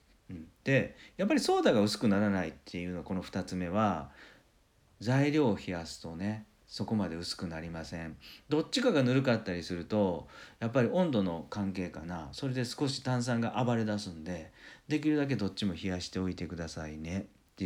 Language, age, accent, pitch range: Japanese, 50-69, native, 85-115 Hz